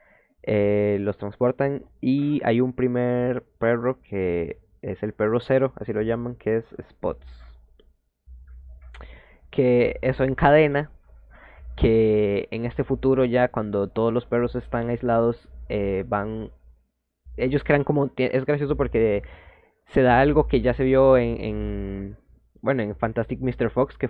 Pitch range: 100-125 Hz